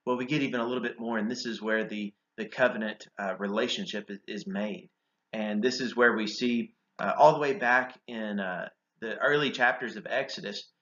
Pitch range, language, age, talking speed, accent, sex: 110-140 Hz, English, 30-49, 210 wpm, American, male